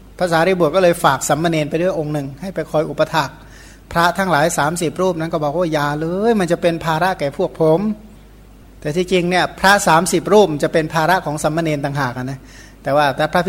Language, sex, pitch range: Thai, male, 145-175 Hz